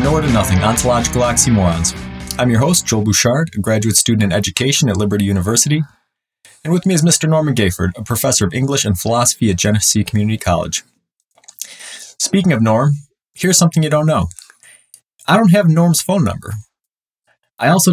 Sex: male